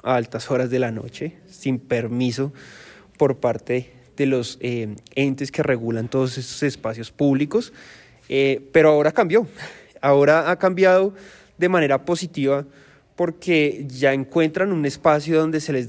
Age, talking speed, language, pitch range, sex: 20-39, 145 wpm, Spanish, 130-160 Hz, male